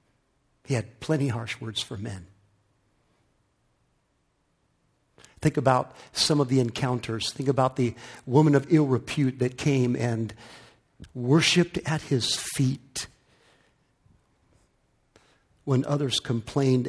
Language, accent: English, American